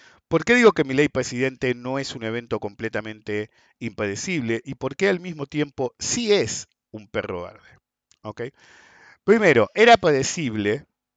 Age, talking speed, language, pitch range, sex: 50-69, 150 wpm, Spanish, 115-180 Hz, male